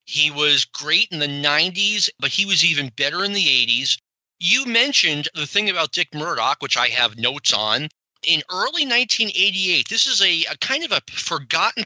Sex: male